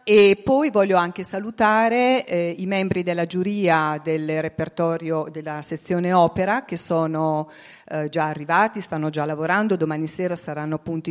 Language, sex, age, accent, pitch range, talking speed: Italian, female, 40-59, native, 160-200 Hz, 145 wpm